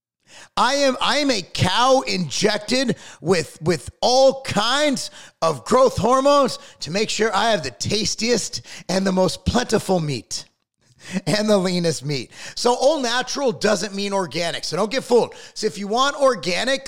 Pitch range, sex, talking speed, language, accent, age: 170-255 Hz, male, 160 wpm, English, American, 30-49